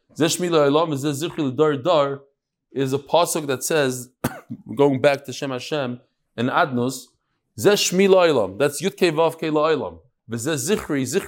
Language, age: English, 20-39